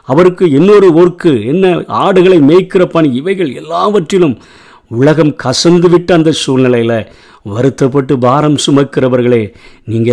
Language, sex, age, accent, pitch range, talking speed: Tamil, male, 50-69, native, 125-170 Hz, 100 wpm